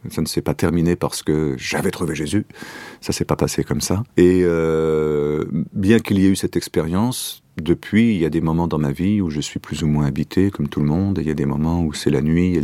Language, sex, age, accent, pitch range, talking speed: French, male, 40-59, French, 80-110 Hz, 270 wpm